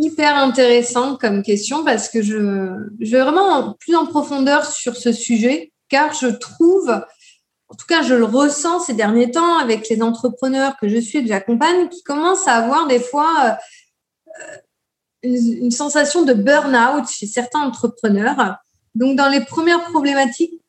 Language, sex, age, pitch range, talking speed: French, female, 20-39, 235-330 Hz, 165 wpm